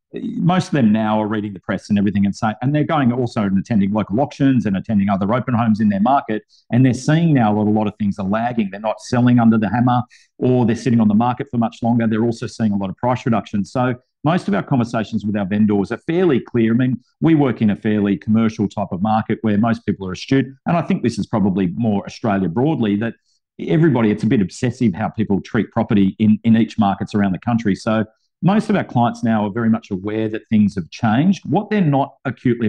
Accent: Australian